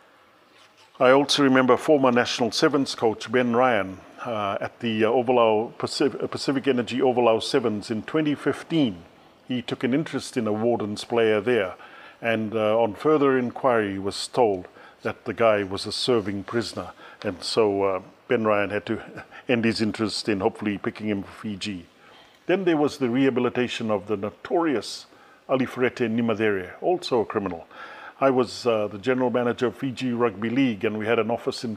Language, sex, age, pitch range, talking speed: English, male, 50-69, 110-135 Hz, 170 wpm